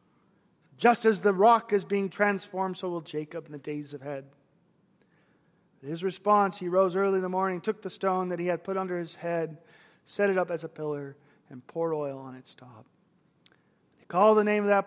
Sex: male